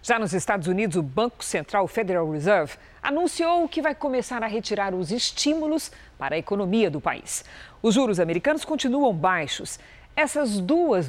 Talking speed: 155 wpm